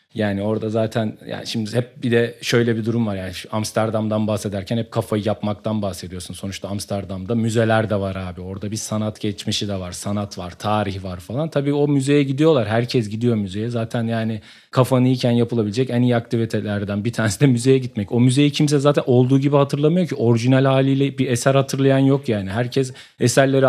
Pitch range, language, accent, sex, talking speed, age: 105-130 Hz, Turkish, native, male, 185 wpm, 40-59